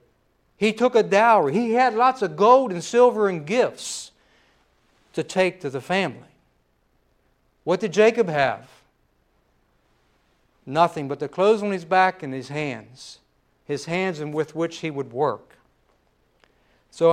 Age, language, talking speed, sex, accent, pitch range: 60-79, English, 145 wpm, male, American, 150-215 Hz